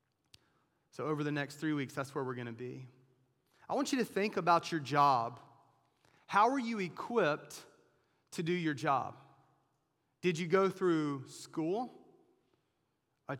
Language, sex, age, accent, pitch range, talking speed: English, male, 30-49, American, 140-180 Hz, 150 wpm